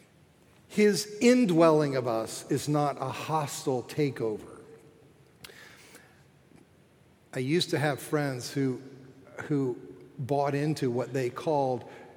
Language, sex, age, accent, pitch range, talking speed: English, male, 50-69, American, 145-235 Hz, 105 wpm